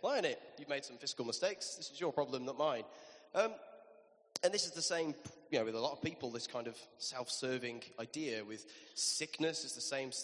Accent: British